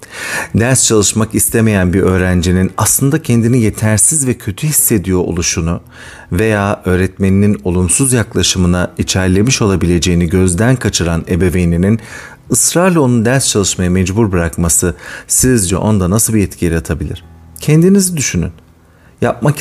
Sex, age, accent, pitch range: male, 40-59, native, 90-115 Hz